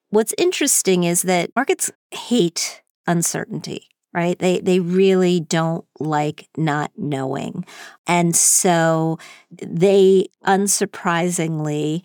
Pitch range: 160-190 Hz